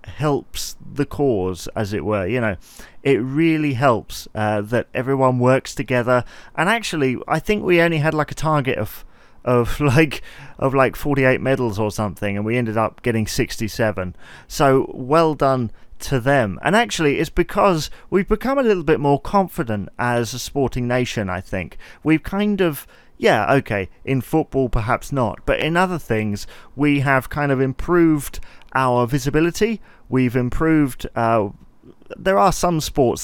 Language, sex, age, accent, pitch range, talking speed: English, male, 30-49, British, 115-150 Hz, 160 wpm